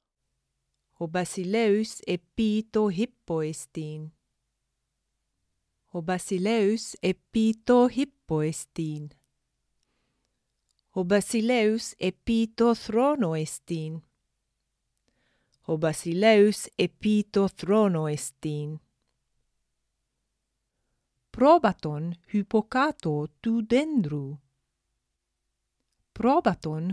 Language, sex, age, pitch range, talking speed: Greek, female, 30-49, 150-225 Hz, 35 wpm